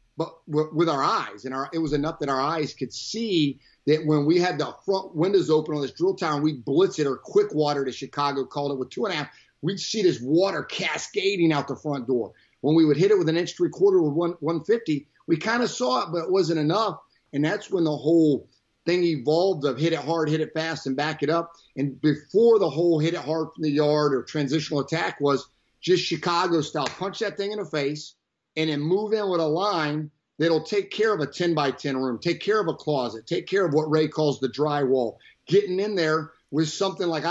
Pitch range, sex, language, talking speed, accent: 145-175 Hz, male, English, 245 wpm, American